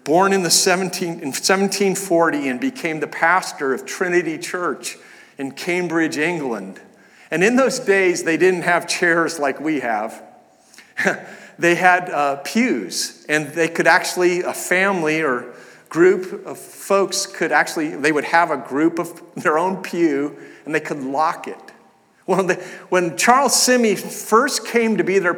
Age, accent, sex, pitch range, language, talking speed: 50-69, American, male, 175-225 Hz, English, 160 wpm